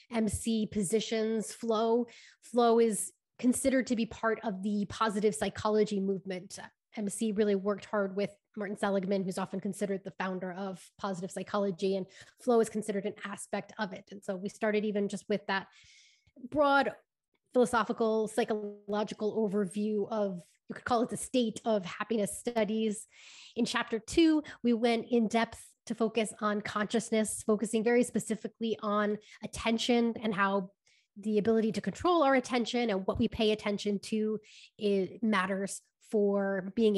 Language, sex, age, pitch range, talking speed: English, female, 20-39, 205-230 Hz, 150 wpm